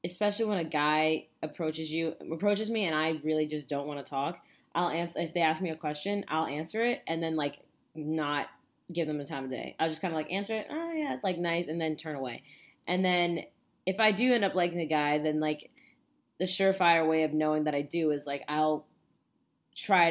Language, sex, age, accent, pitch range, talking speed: English, female, 20-39, American, 155-190 Hz, 225 wpm